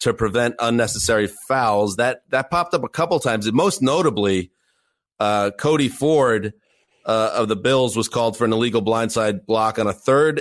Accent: American